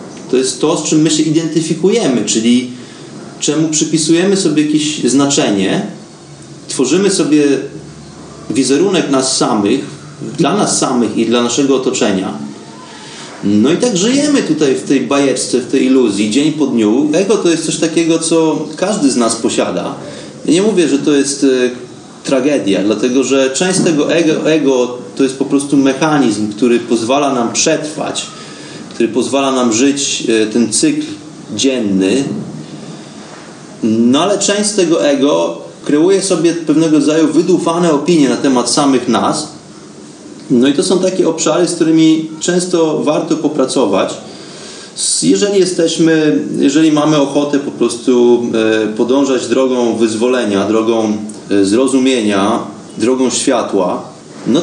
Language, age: Polish, 30-49